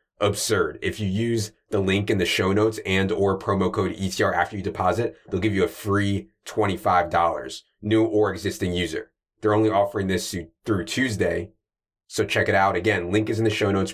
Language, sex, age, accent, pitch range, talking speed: English, male, 30-49, American, 90-110 Hz, 200 wpm